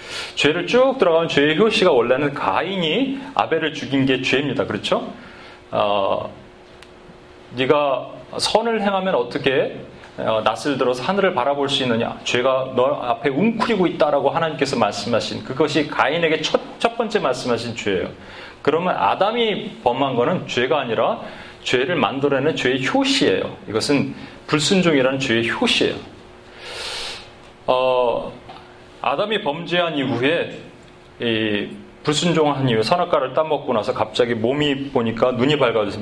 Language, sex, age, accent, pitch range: Korean, male, 30-49, native, 125-180 Hz